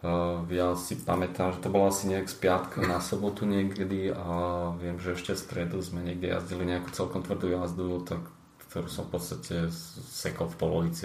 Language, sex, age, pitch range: Slovak, male, 20-39, 85-100 Hz